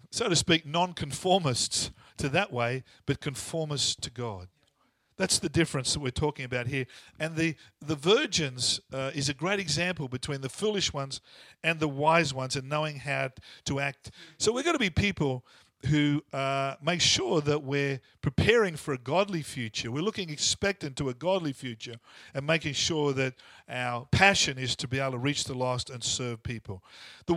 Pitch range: 135-170 Hz